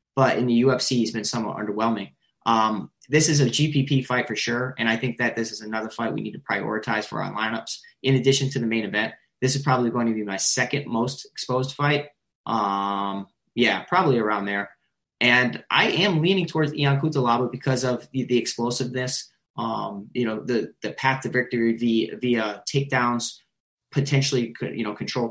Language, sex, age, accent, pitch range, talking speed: English, male, 20-39, American, 115-135 Hz, 190 wpm